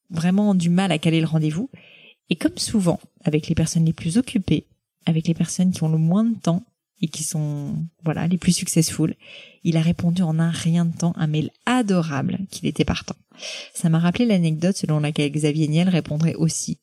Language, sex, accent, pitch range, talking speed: French, female, French, 155-195 Hz, 200 wpm